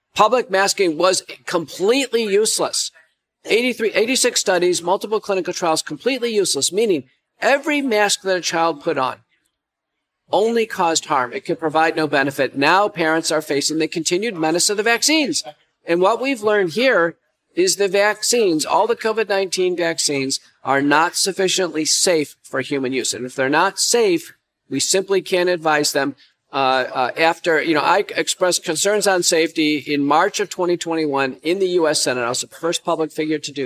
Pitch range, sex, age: 145-195 Hz, male, 50-69